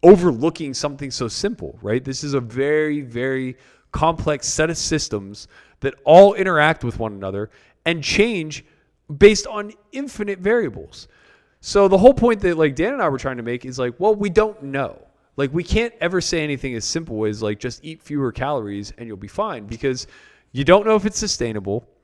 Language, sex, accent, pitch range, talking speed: English, male, American, 115-165 Hz, 190 wpm